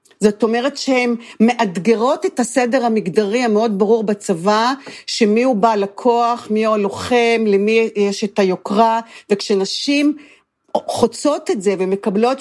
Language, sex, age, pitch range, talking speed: Hebrew, female, 50-69, 200-245 Hz, 125 wpm